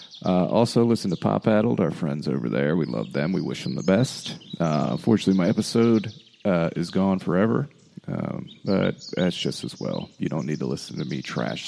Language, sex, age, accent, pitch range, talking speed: English, male, 40-59, American, 100-125 Hz, 205 wpm